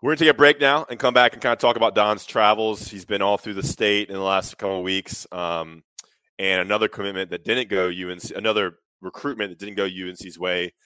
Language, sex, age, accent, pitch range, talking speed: English, male, 20-39, American, 95-105 Hz, 240 wpm